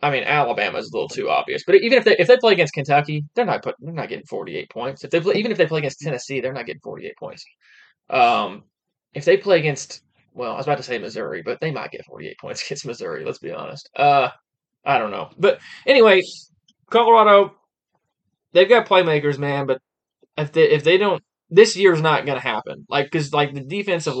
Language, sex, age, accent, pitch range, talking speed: English, male, 20-39, American, 135-200 Hz, 230 wpm